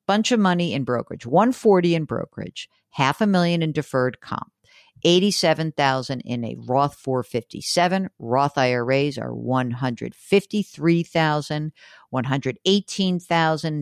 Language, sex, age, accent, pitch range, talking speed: English, female, 50-69, American, 140-195 Hz, 105 wpm